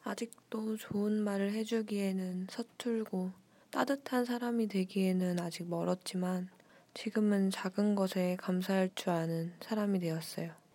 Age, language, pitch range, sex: 20-39, Korean, 180-220 Hz, female